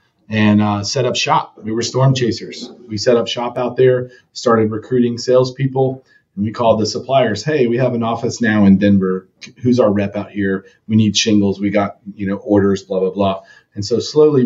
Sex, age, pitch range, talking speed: male, 40-59, 110-125 Hz, 210 wpm